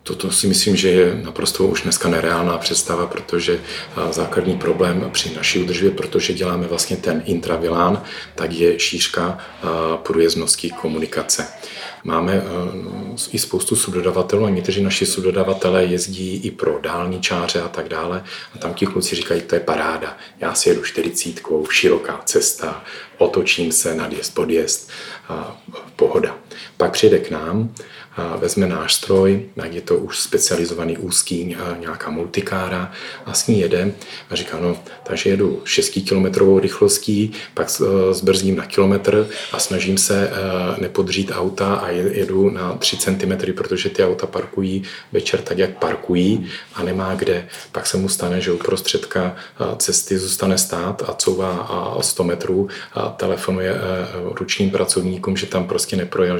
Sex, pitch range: male, 90-95 Hz